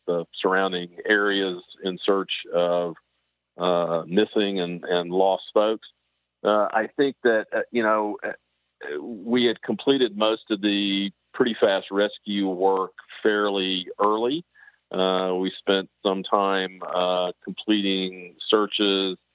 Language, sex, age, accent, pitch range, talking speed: English, male, 50-69, American, 85-95 Hz, 120 wpm